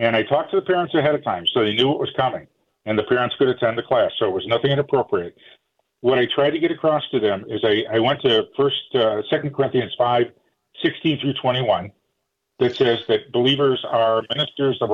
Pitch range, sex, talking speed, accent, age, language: 115-140 Hz, male, 220 wpm, American, 50-69, English